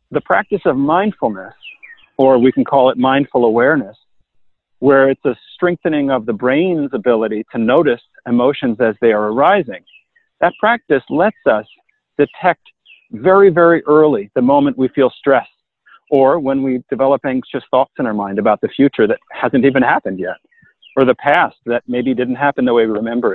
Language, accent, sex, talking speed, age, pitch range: English, American, male, 170 wpm, 40-59, 130-165 Hz